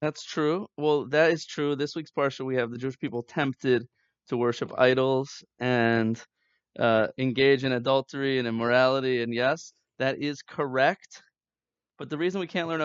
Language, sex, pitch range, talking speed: English, male, 120-150 Hz, 170 wpm